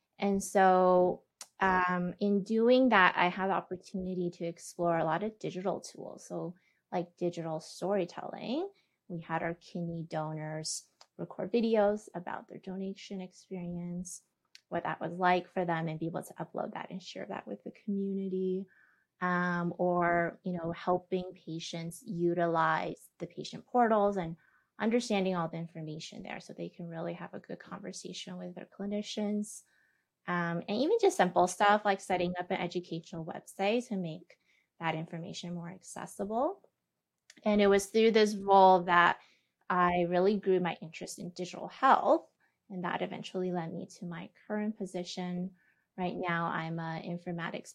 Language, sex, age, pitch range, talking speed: English, female, 20-39, 170-200 Hz, 155 wpm